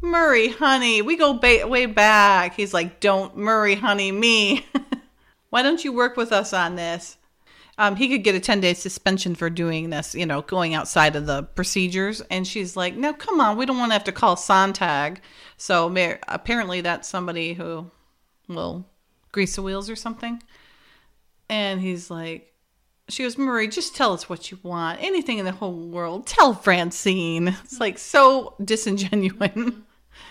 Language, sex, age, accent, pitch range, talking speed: English, female, 40-59, American, 175-230 Hz, 170 wpm